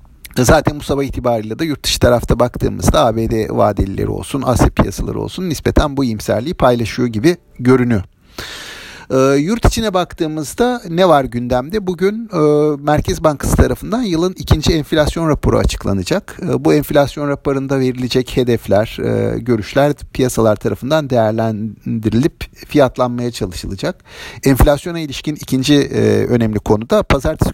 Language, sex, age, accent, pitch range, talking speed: Turkish, male, 50-69, native, 110-145 Hz, 120 wpm